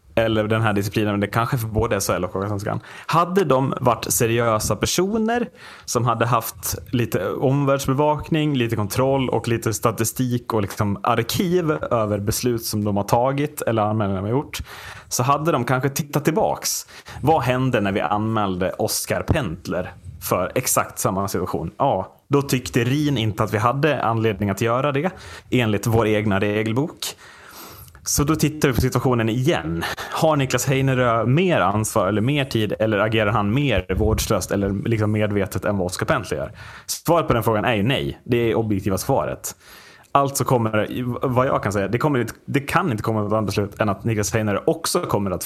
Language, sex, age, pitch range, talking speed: Swedish, male, 30-49, 105-135 Hz, 180 wpm